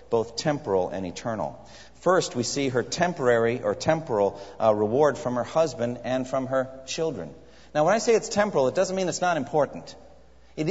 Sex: male